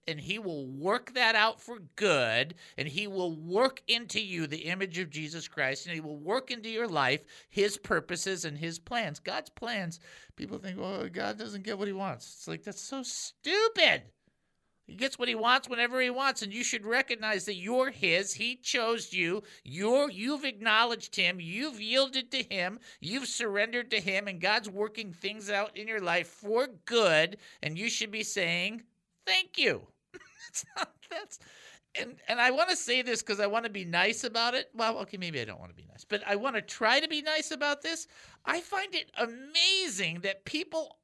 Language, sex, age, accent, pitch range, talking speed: English, male, 50-69, American, 175-245 Hz, 200 wpm